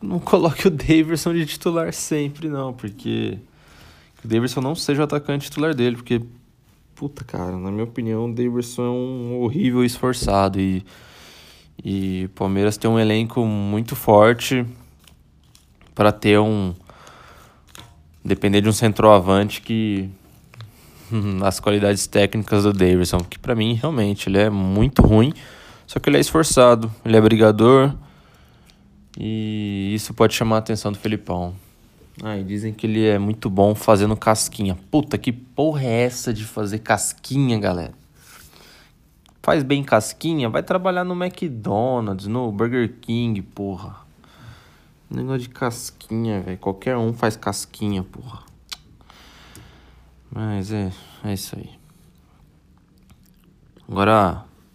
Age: 20-39